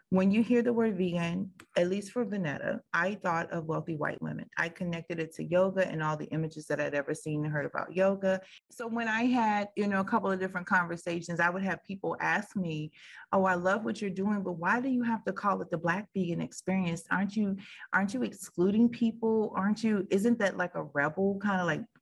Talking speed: 230 wpm